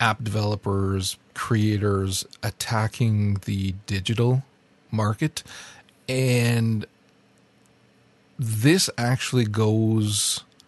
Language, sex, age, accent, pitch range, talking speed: English, male, 40-59, American, 100-120 Hz, 60 wpm